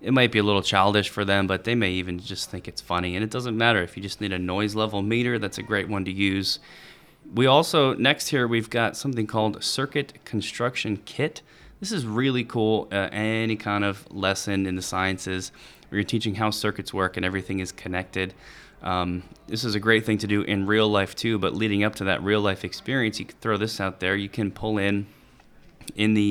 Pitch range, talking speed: 95-110 Hz, 225 wpm